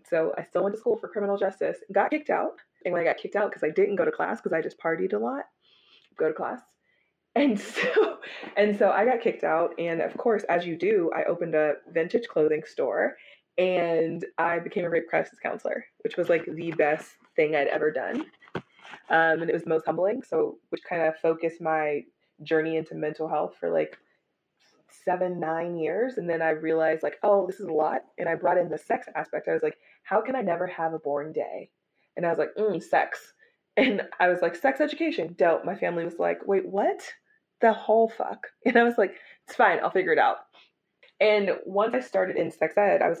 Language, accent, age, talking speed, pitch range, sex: English, American, 20-39, 220 wpm, 160-250 Hz, female